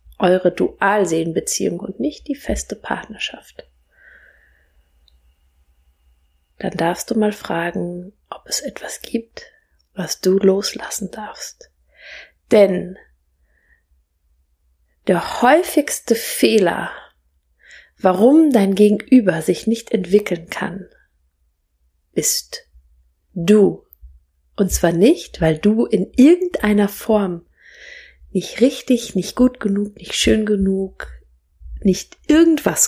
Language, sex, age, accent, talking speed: German, female, 30-49, German, 95 wpm